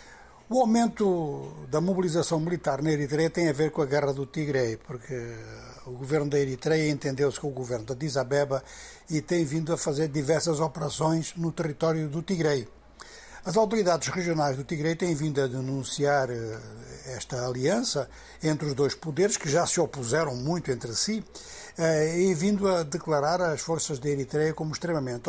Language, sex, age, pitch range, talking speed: Portuguese, male, 60-79, 140-170 Hz, 165 wpm